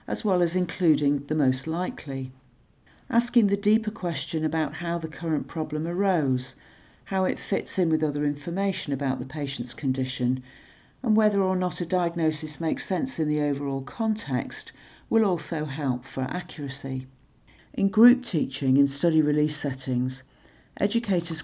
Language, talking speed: English, 150 wpm